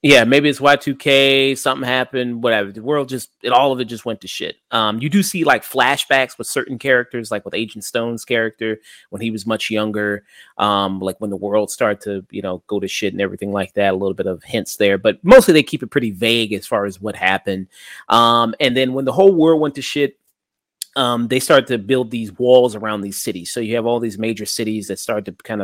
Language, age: English, 30-49